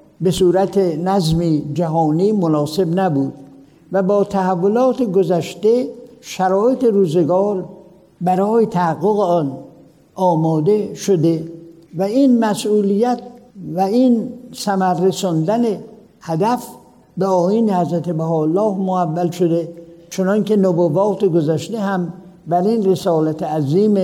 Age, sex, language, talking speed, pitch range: 60-79, male, Persian, 95 wpm, 165-200 Hz